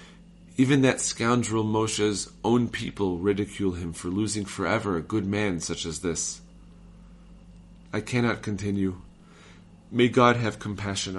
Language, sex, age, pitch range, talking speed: English, male, 40-59, 90-105 Hz, 130 wpm